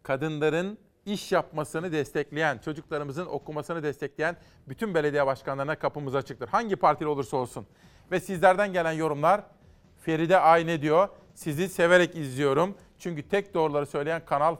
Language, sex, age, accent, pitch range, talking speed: Turkish, male, 40-59, native, 145-185 Hz, 125 wpm